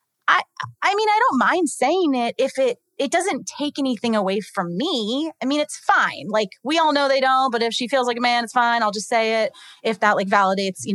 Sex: female